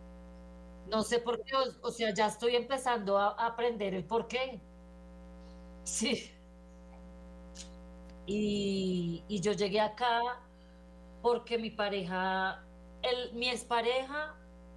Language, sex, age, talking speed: Spanish, female, 30-49, 115 wpm